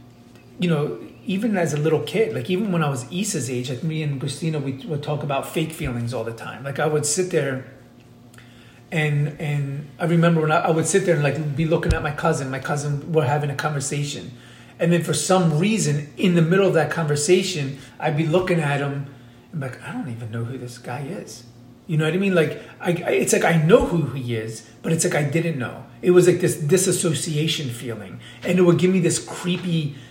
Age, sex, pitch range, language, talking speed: 30-49, male, 135-170 Hz, English, 230 wpm